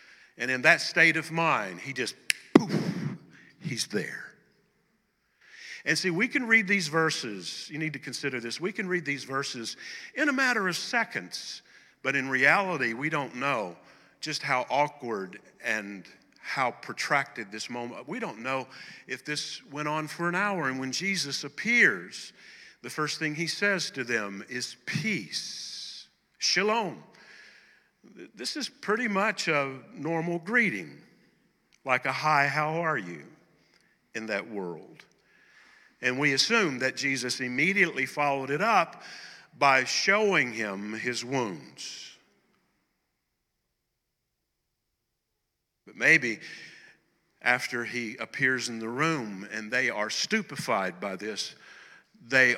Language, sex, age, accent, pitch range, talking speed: English, male, 50-69, American, 125-185 Hz, 135 wpm